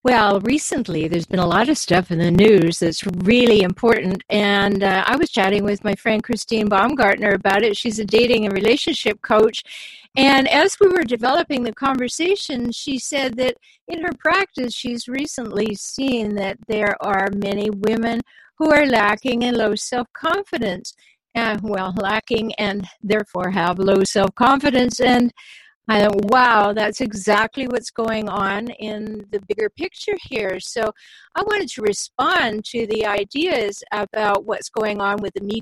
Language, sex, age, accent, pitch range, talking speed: English, female, 50-69, American, 200-250 Hz, 160 wpm